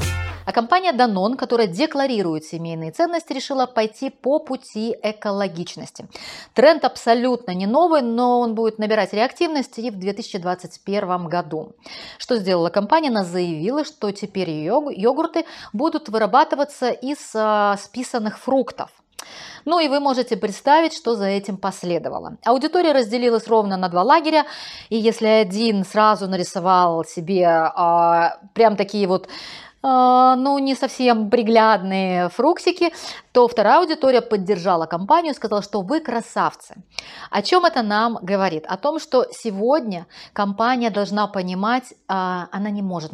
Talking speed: 130 wpm